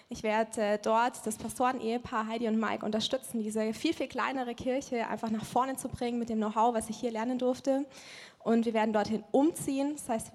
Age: 20-39